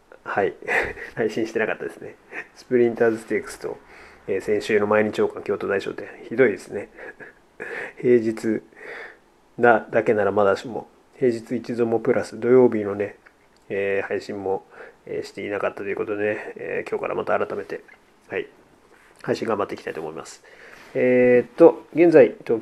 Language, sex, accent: Japanese, male, native